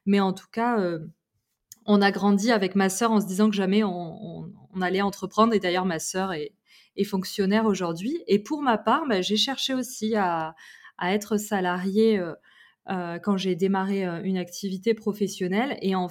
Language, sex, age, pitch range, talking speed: French, female, 20-39, 185-215 Hz, 190 wpm